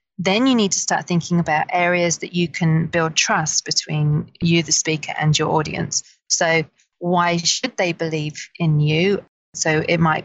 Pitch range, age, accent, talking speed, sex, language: 160-190 Hz, 30-49, British, 175 wpm, female, English